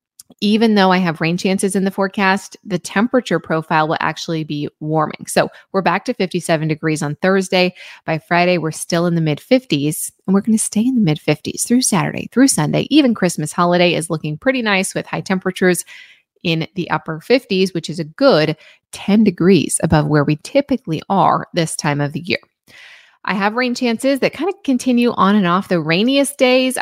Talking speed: 200 wpm